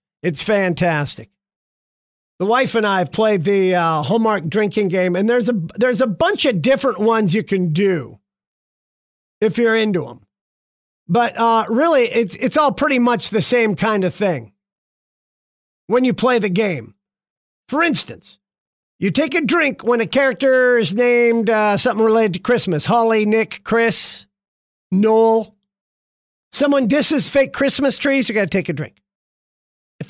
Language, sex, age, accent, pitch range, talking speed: English, male, 50-69, American, 195-255 Hz, 160 wpm